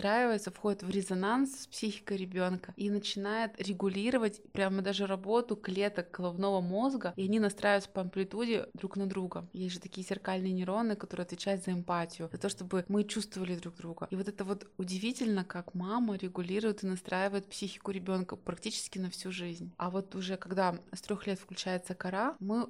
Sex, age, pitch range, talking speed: female, 20-39, 185-210 Hz, 170 wpm